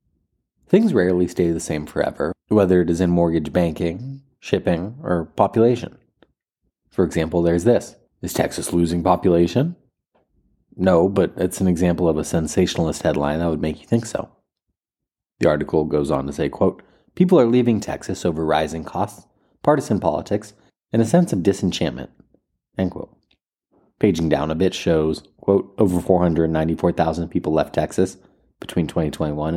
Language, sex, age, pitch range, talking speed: English, male, 30-49, 80-95 Hz, 150 wpm